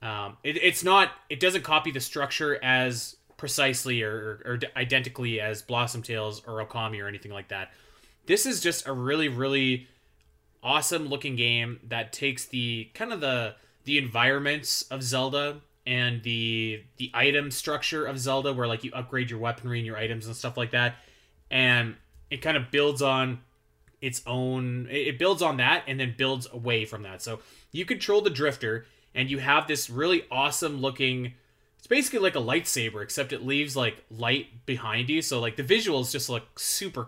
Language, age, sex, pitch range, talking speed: English, 20-39, male, 115-145 Hz, 185 wpm